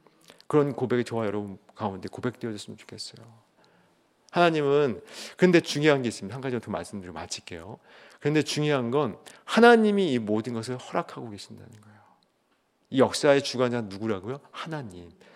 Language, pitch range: Korean, 125-195 Hz